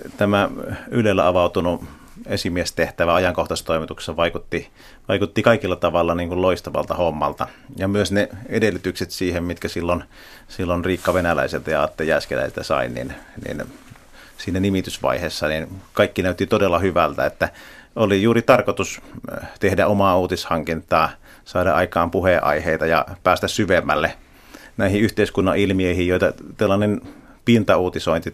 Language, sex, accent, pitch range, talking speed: Finnish, male, native, 85-95 Hz, 115 wpm